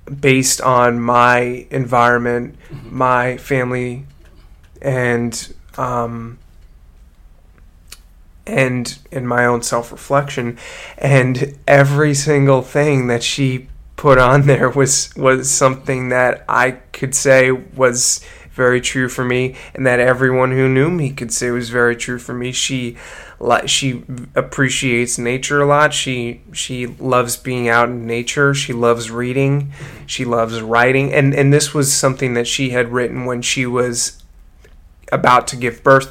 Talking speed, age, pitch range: 135 wpm, 20-39, 120-135 Hz